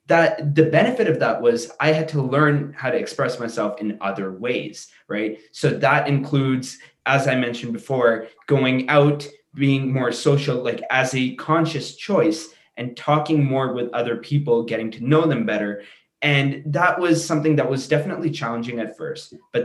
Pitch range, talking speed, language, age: 120-155 Hz, 175 wpm, English, 20-39